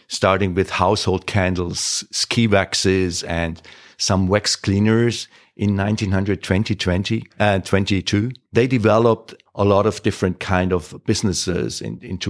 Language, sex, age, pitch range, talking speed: English, male, 50-69, 95-115 Hz, 120 wpm